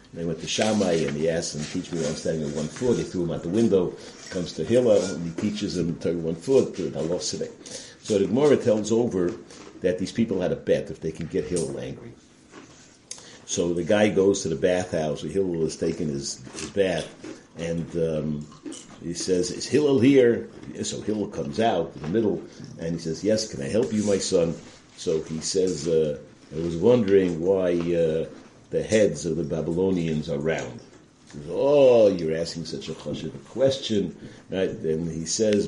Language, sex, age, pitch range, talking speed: English, male, 50-69, 80-95 Hz, 200 wpm